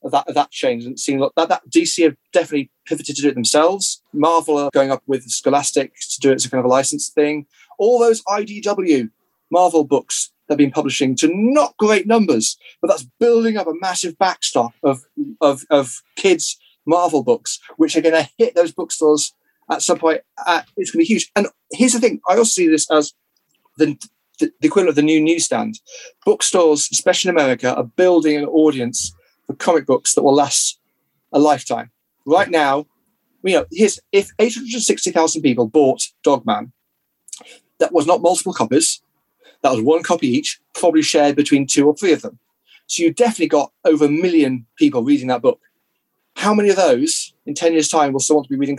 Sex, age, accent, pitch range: male, 30-49, British, 145-230 Hz